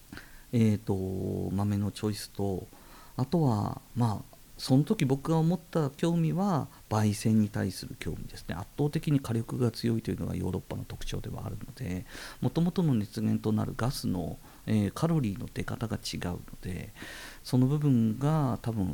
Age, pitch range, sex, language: 50-69, 95-135 Hz, male, Japanese